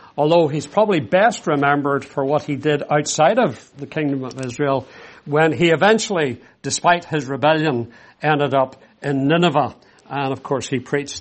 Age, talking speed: 50-69, 160 wpm